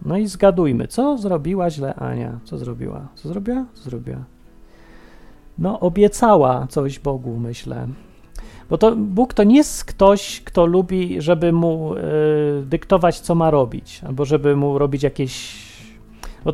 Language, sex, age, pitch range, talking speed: Polish, male, 30-49, 135-200 Hz, 145 wpm